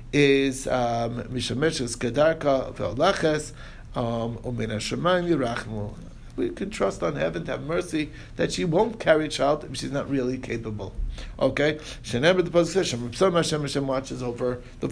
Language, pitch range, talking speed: English, 130-195 Hz, 140 wpm